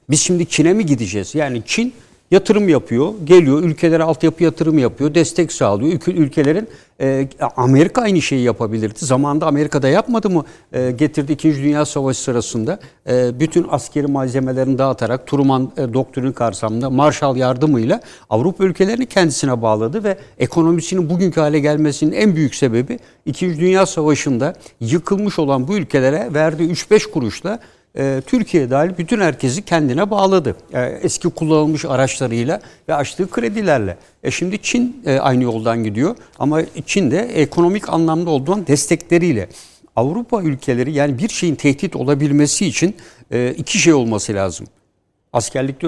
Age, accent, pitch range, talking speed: 60-79, native, 130-175 Hz, 130 wpm